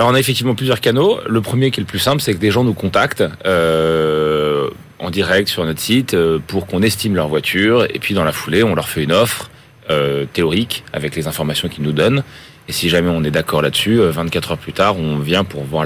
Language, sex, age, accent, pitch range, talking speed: French, male, 30-49, French, 85-120 Hz, 240 wpm